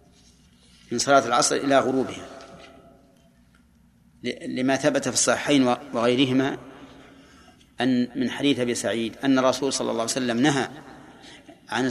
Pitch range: 115-145 Hz